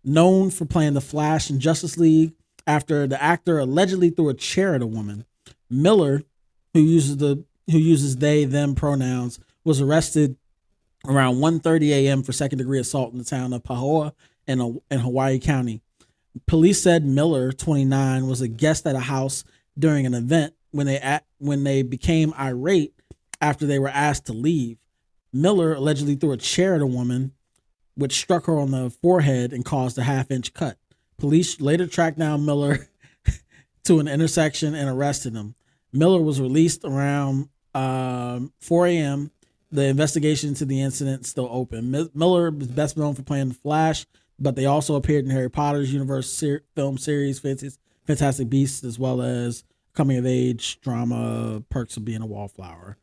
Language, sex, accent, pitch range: English, male, American, 130-155 Hz